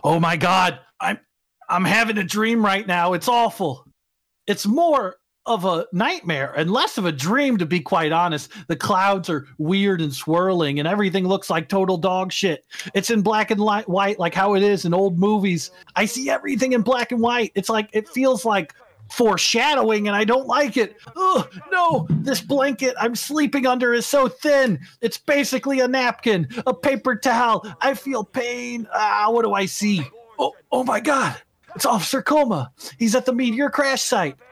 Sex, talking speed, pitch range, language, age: male, 190 wpm, 180-250 Hz, English, 40-59